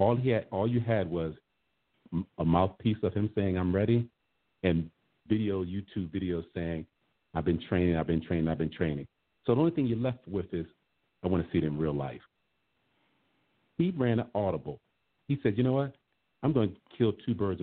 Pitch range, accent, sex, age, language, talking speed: 85-120 Hz, American, male, 50-69, English, 200 wpm